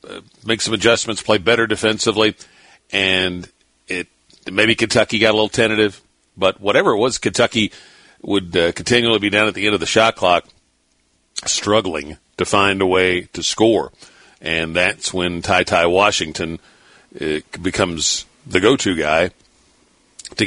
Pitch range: 90-110 Hz